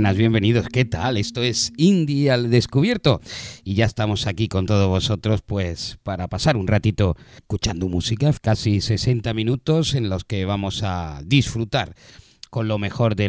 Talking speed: 160 wpm